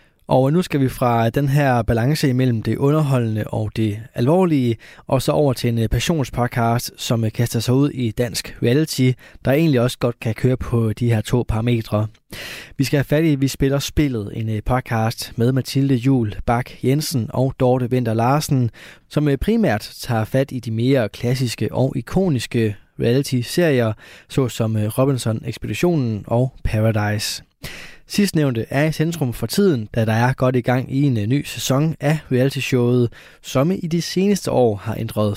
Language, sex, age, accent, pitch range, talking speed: Danish, male, 20-39, native, 115-140 Hz, 170 wpm